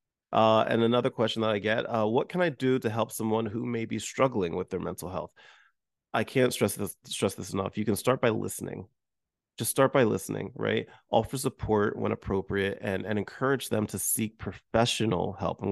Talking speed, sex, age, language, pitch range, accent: 200 wpm, male, 30-49, English, 105-120 Hz, American